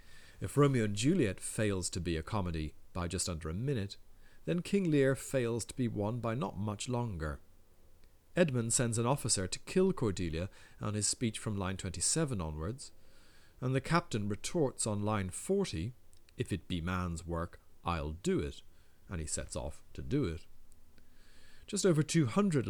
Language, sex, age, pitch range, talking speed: English, male, 40-59, 90-125 Hz, 170 wpm